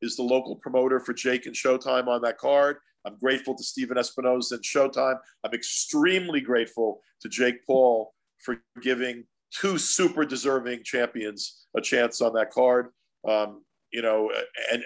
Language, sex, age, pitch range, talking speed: English, male, 50-69, 120-140 Hz, 160 wpm